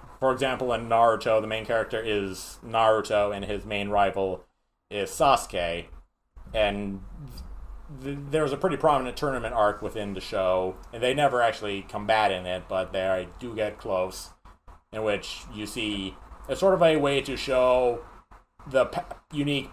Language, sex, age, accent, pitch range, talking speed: English, male, 30-49, American, 95-135 Hz, 150 wpm